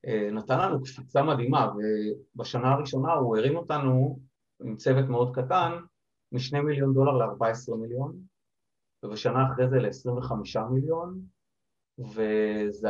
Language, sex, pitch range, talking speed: Hebrew, male, 120-155 Hz, 110 wpm